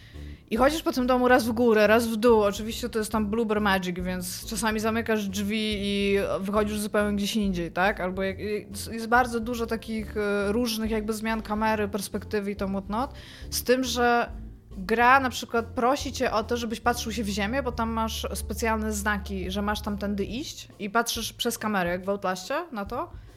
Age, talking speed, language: 20-39, 190 wpm, Polish